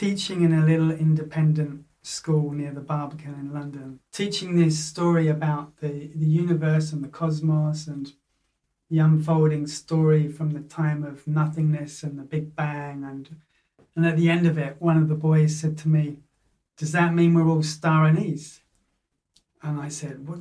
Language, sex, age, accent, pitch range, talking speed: English, male, 30-49, British, 150-165 Hz, 170 wpm